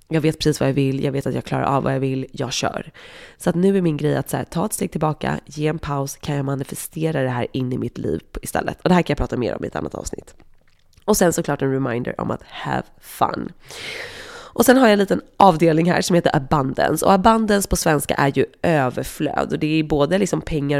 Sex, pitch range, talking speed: female, 135-175 Hz, 240 wpm